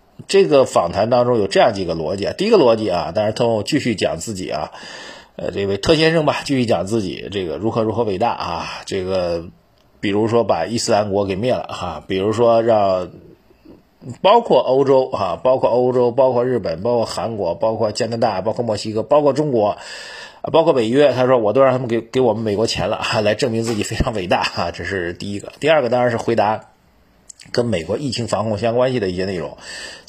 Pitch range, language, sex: 100-125 Hz, Chinese, male